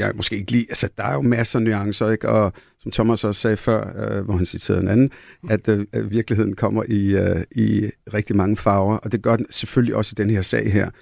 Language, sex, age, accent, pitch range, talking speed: Danish, male, 60-79, native, 105-125 Hz, 245 wpm